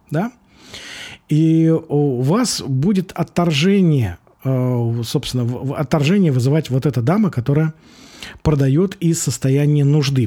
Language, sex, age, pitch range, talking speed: Russian, male, 40-59, 125-160 Hz, 90 wpm